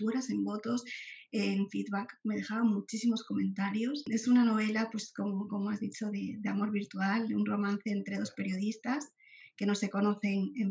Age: 20-39